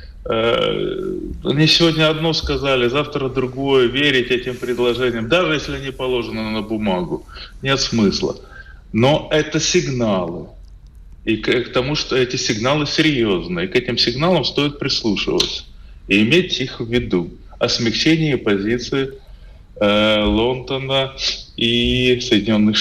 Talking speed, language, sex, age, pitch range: 120 wpm, Russian, male, 20-39, 100-140 Hz